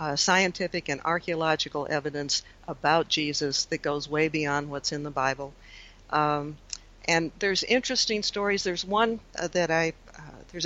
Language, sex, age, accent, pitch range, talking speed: English, female, 60-79, American, 150-180 Hz, 150 wpm